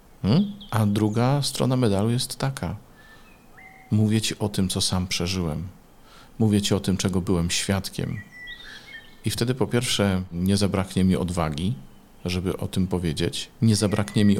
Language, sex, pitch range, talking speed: Polish, male, 90-110 Hz, 145 wpm